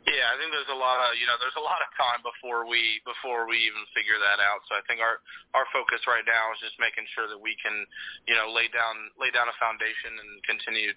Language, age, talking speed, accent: English, 20-39, 255 wpm, American